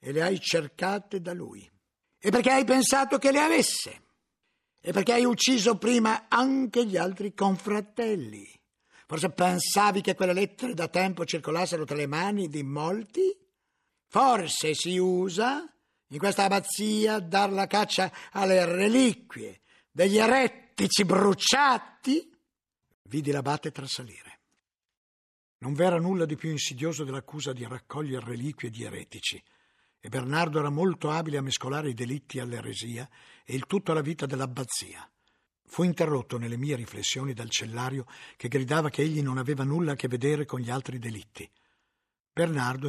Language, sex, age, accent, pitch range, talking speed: Italian, male, 50-69, native, 130-190 Hz, 145 wpm